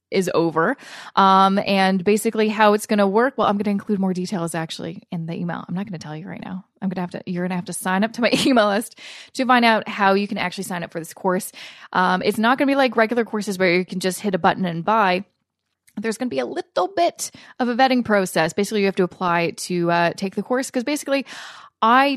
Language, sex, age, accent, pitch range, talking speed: English, female, 20-39, American, 185-230 Hz, 270 wpm